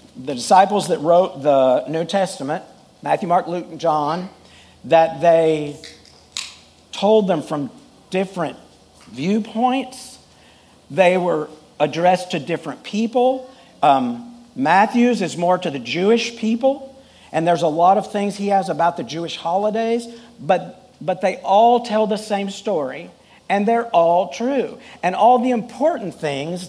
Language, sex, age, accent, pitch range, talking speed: English, male, 50-69, American, 165-230 Hz, 140 wpm